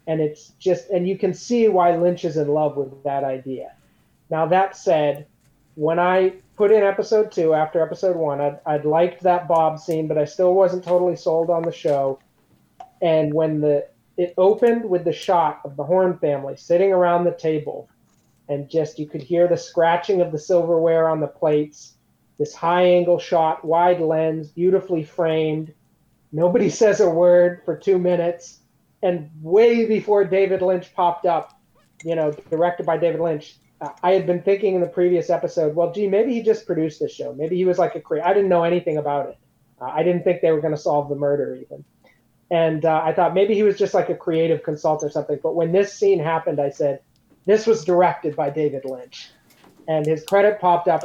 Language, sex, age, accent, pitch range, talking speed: English, male, 30-49, American, 155-180 Hz, 200 wpm